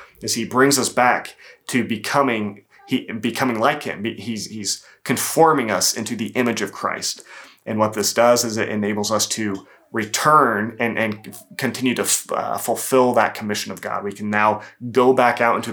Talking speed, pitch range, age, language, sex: 185 wpm, 100-115 Hz, 30-49, English, male